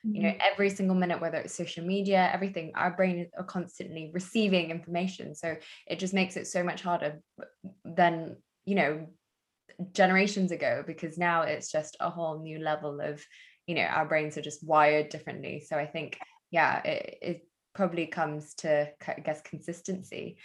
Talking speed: 170 wpm